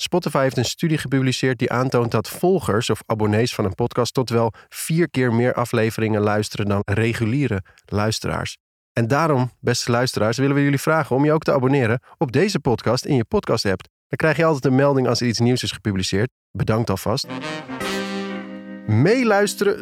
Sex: male